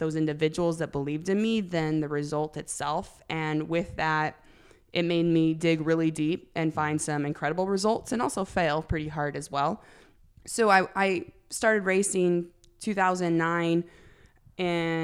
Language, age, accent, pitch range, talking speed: English, 20-39, American, 150-170 Hz, 150 wpm